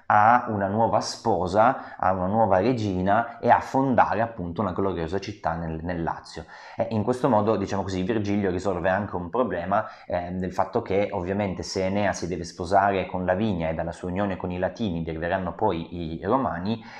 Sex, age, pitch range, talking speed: male, 30-49, 85-110 Hz, 185 wpm